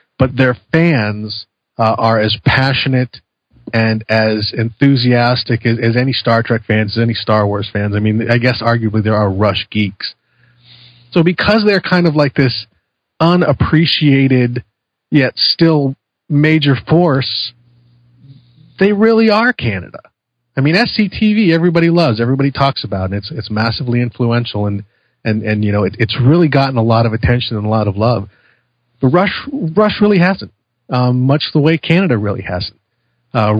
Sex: male